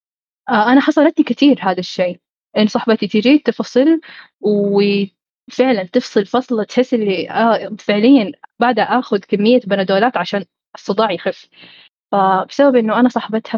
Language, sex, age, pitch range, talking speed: Arabic, female, 10-29, 200-250 Hz, 115 wpm